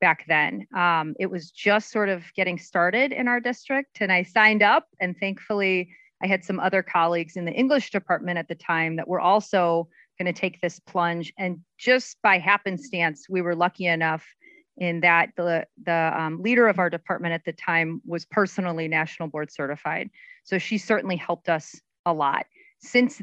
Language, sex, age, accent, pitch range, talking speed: English, female, 30-49, American, 170-210 Hz, 185 wpm